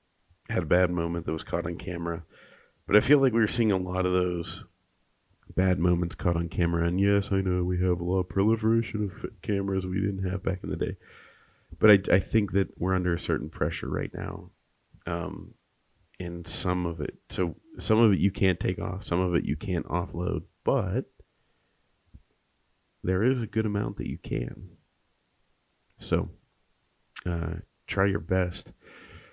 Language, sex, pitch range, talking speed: English, male, 85-105 Hz, 180 wpm